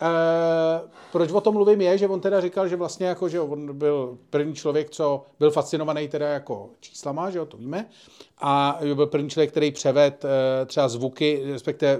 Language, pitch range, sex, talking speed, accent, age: Czech, 130-170 Hz, male, 185 wpm, native, 40-59